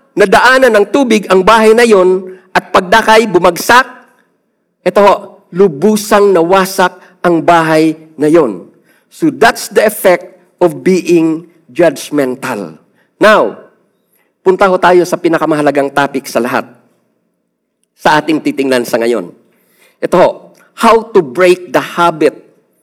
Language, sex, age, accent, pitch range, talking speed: Filipino, male, 50-69, native, 155-205 Hz, 115 wpm